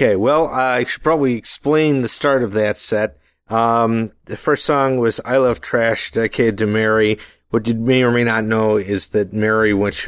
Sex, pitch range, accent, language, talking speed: male, 105-130 Hz, American, English, 210 wpm